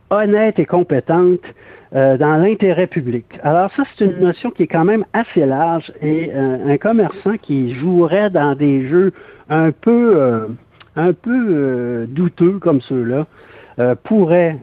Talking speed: 155 wpm